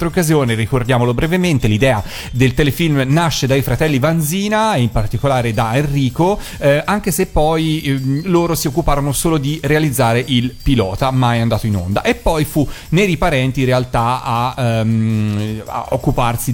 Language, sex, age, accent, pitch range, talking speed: Italian, male, 40-59, native, 115-145 Hz, 155 wpm